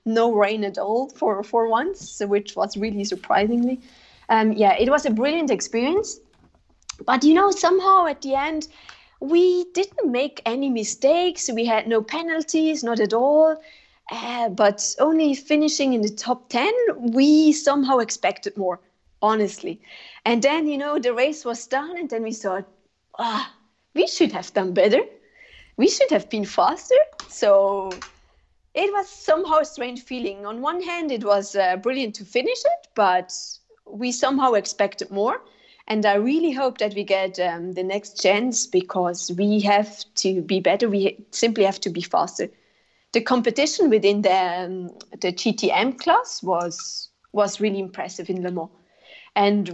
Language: English